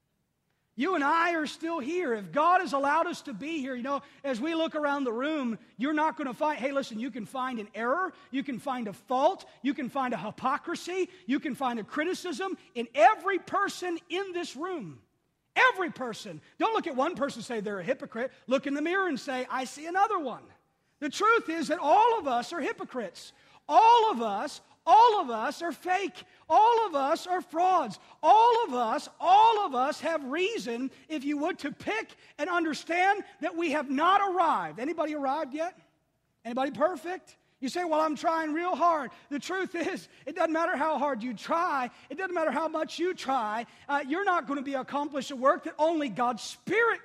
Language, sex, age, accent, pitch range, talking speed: English, male, 40-59, American, 260-350 Hz, 205 wpm